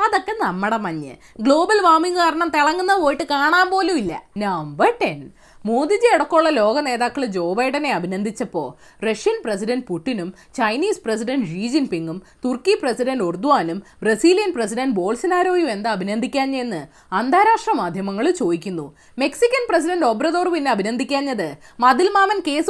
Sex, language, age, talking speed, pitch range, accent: female, Malayalam, 20-39, 115 wpm, 220-335 Hz, native